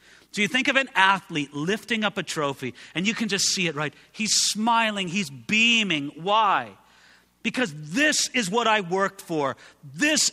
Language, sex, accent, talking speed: English, male, American, 175 wpm